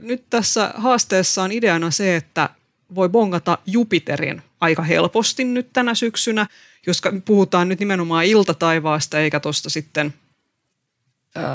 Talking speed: 125 wpm